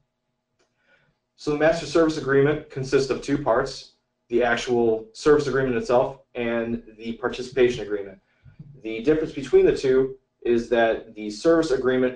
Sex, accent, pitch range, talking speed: male, American, 110-135 Hz, 140 wpm